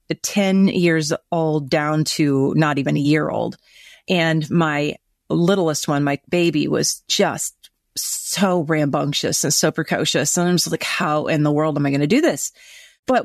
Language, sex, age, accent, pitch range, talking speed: English, female, 30-49, American, 160-205 Hz, 170 wpm